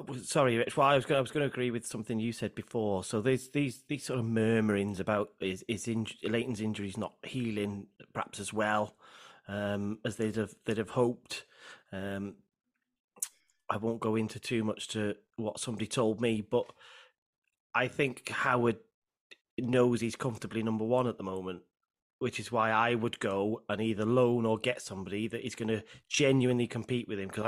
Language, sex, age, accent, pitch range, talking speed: English, male, 30-49, British, 110-125 Hz, 190 wpm